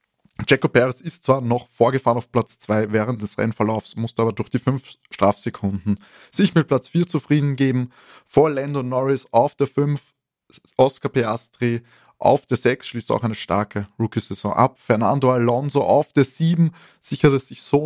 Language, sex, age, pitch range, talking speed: German, male, 20-39, 115-140 Hz, 165 wpm